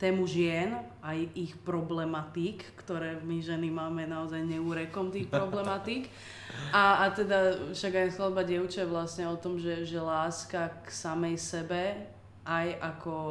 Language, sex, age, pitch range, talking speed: Slovak, female, 20-39, 155-185 Hz, 145 wpm